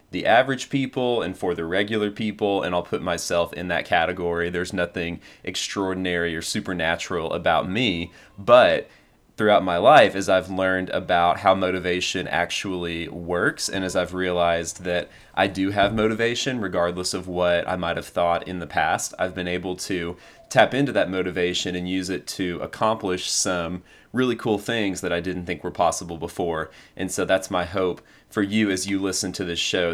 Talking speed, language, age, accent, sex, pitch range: 180 wpm, English, 30-49, American, male, 85-95 Hz